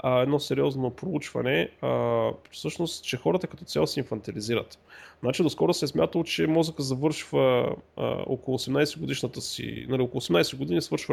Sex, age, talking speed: male, 30-49, 150 wpm